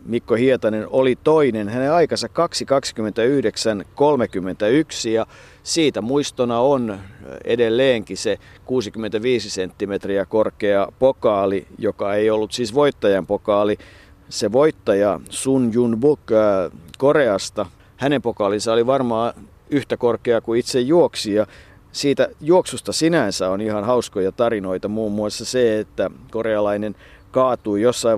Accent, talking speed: native, 115 wpm